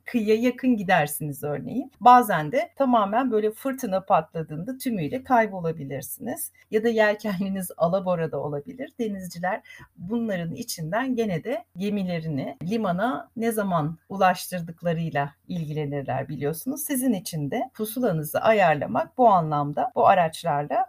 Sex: female